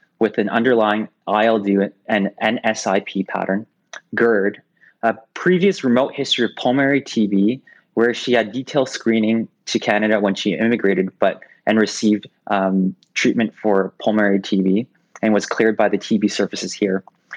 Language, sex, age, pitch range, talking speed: English, male, 20-39, 100-120 Hz, 140 wpm